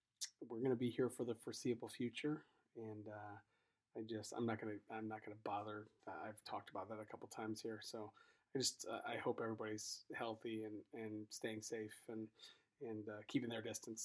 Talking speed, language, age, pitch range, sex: 195 wpm, English, 30-49, 110-120 Hz, male